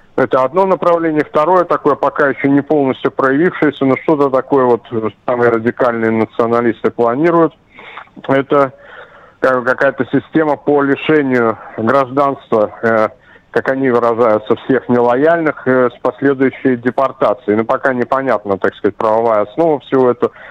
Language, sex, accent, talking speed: Russian, male, native, 130 wpm